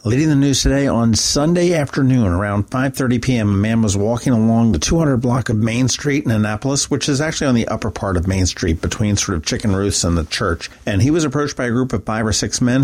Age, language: 50-69, English